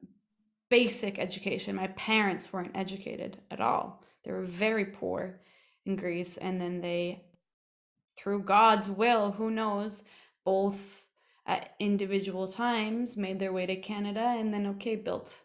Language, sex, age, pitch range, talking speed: English, female, 20-39, 180-215 Hz, 135 wpm